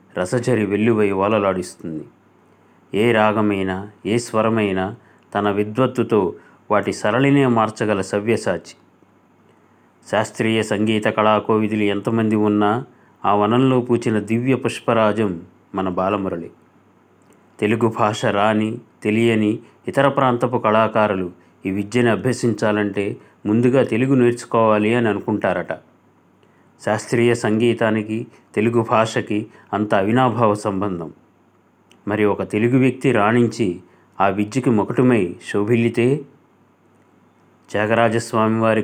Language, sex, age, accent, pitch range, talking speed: Telugu, male, 30-49, native, 105-120 Hz, 90 wpm